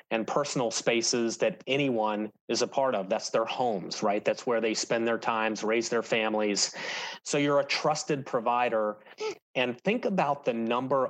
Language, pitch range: English, 110-135 Hz